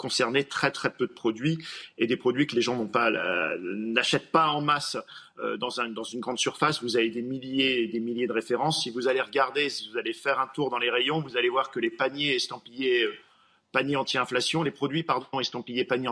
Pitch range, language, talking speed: 130-170 Hz, French, 200 wpm